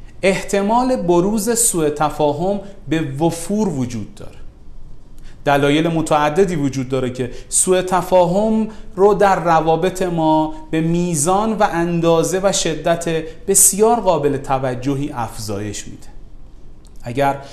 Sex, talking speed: male, 105 wpm